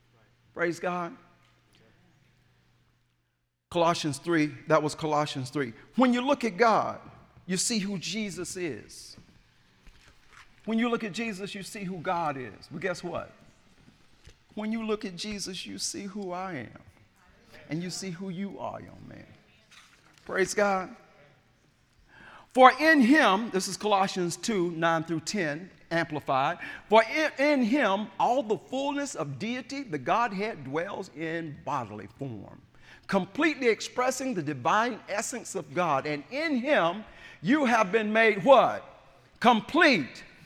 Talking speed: 140 wpm